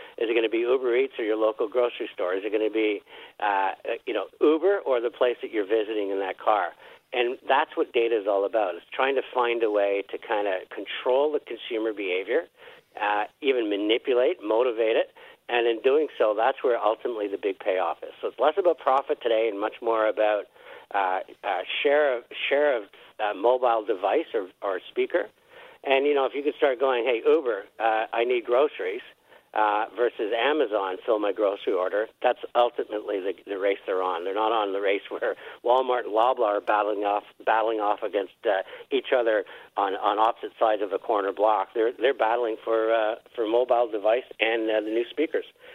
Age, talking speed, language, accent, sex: 60-79, 205 wpm, English, American, male